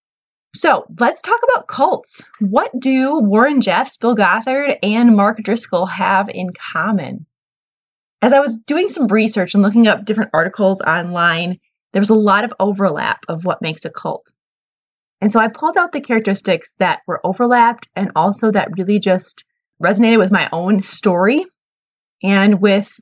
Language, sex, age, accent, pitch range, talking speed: English, female, 20-39, American, 185-230 Hz, 160 wpm